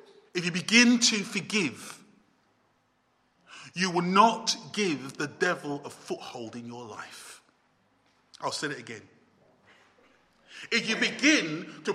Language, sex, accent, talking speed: English, male, British, 120 wpm